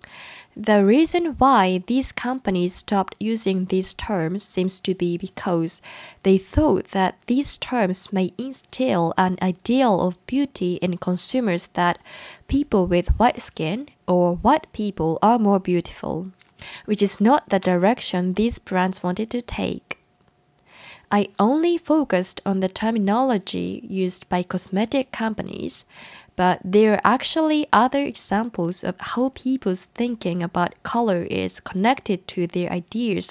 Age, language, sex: 20-39, Japanese, female